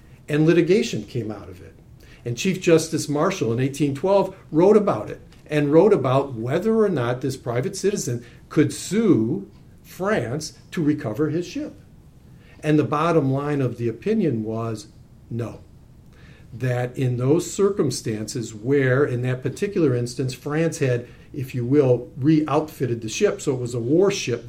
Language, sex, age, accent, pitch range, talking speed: English, male, 50-69, American, 115-150 Hz, 155 wpm